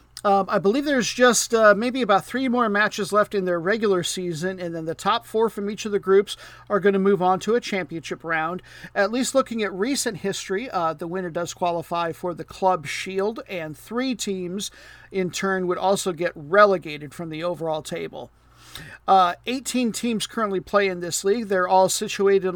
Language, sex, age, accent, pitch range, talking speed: English, male, 50-69, American, 175-220 Hz, 195 wpm